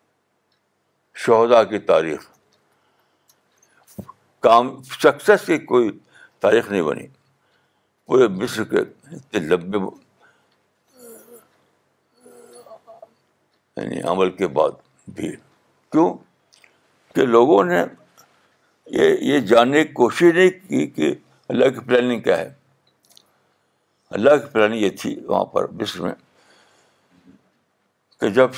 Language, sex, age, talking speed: Urdu, male, 60-79, 95 wpm